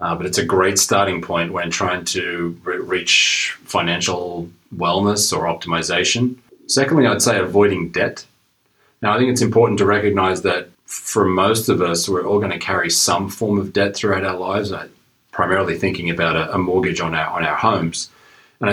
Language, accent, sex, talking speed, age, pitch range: English, Australian, male, 185 wpm, 30-49, 85-105 Hz